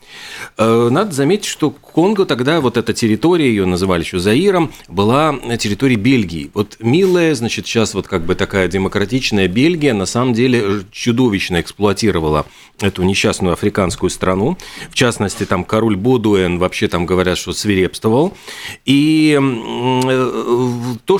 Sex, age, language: male, 40-59, Russian